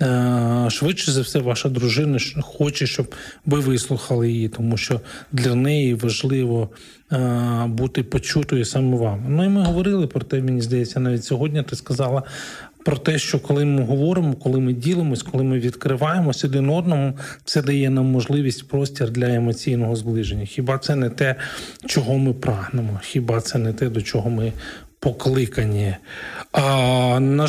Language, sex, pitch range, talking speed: Ukrainian, male, 125-160 Hz, 155 wpm